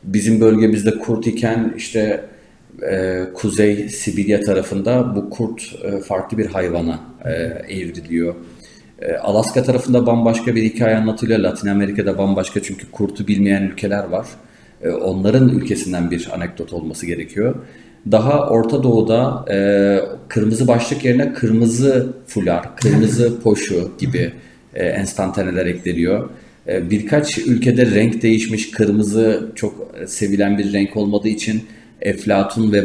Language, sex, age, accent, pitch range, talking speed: Turkish, male, 40-59, native, 100-120 Hz, 120 wpm